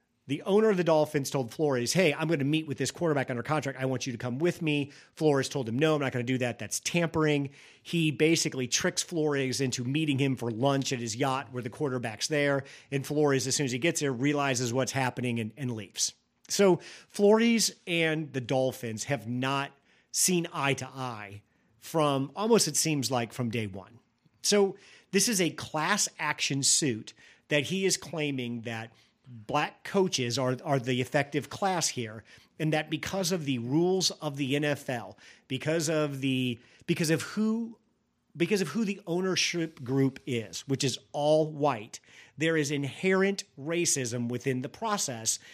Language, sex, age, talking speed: English, male, 40-59, 180 wpm